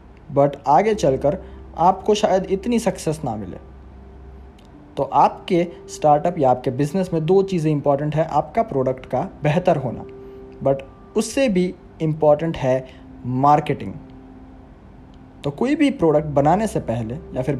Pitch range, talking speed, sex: 130-190 Hz, 135 wpm, male